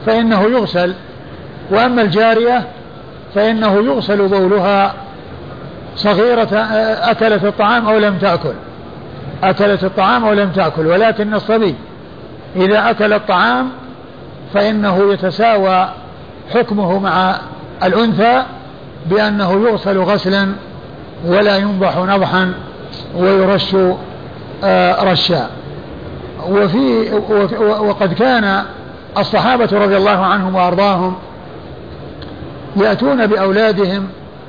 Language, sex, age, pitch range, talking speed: Arabic, male, 50-69, 190-215 Hz, 80 wpm